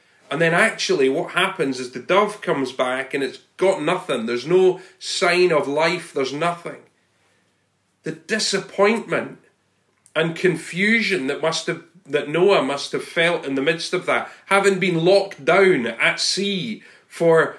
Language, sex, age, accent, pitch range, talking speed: English, male, 40-59, British, 150-205 Hz, 155 wpm